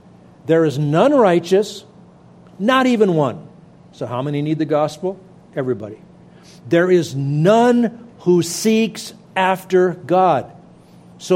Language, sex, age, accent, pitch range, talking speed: English, male, 50-69, American, 135-185 Hz, 115 wpm